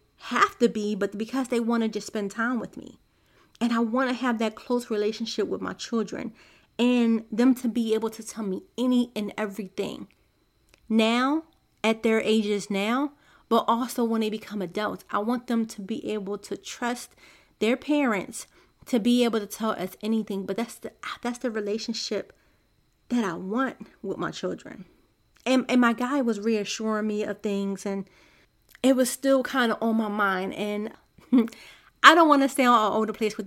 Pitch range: 205-240 Hz